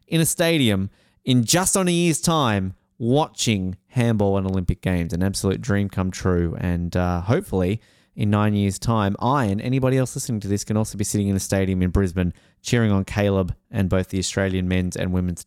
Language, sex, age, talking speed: English, male, 20-39, 200 wpm